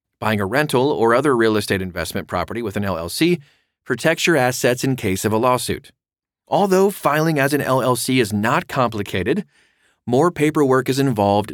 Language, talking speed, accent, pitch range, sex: English, 165 wpm, American, 100-125 Hz, male